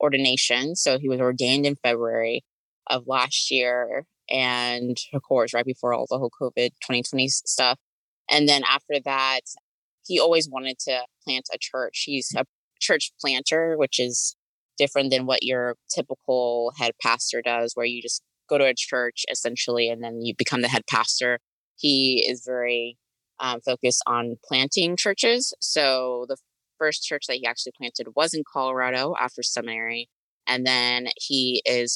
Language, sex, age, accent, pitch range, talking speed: English, female, 20-39, American, 120-130 Hz, 160 wpm